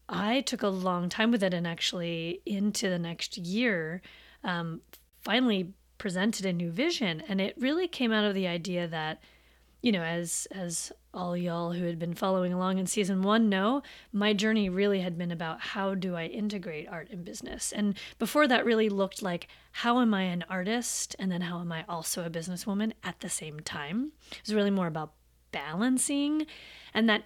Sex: female